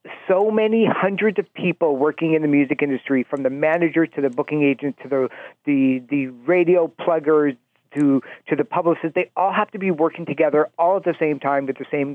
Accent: American